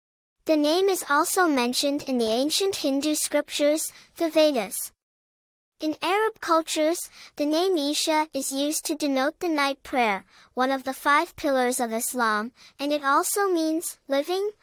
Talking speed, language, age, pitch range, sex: 150 wpm, English, 10-29, 270-330 Hz, male